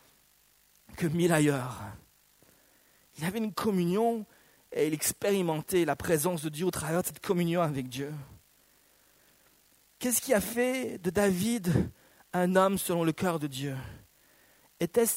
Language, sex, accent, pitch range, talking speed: French, male, French, 155-220 Hz, 140 wpm